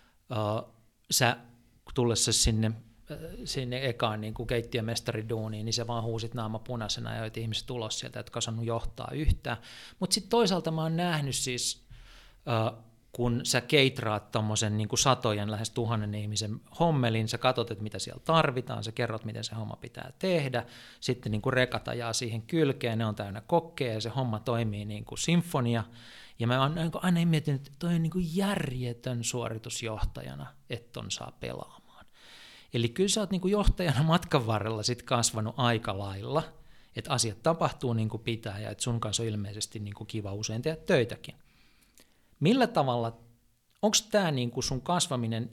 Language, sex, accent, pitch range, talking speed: Finnish, male, native, 110-135 Hz, 160 wpm